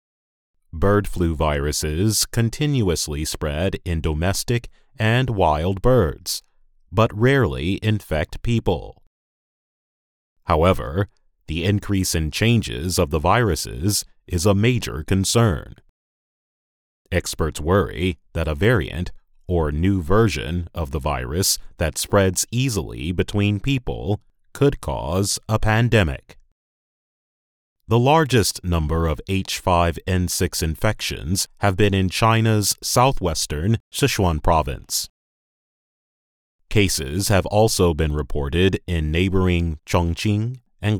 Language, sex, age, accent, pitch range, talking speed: English, male, 30-49, American, 80-110 Hz, 100 wpm